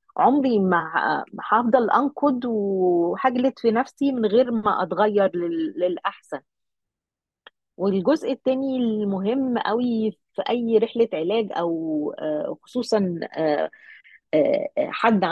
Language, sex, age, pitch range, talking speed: Arabic, female, 30-49, 180-235 Hz, 90 wpm